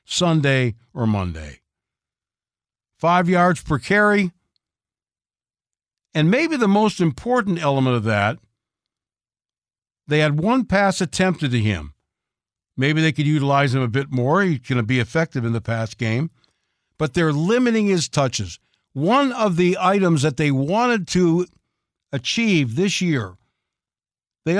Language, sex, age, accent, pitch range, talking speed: English, male, 60-79, American, 120-175 Hz, 135 wpm